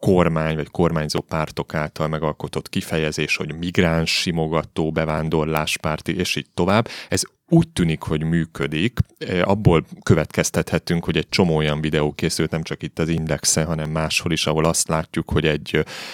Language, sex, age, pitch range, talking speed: Hungarian, male, 30-49, 75-90 Hz, 150 wpm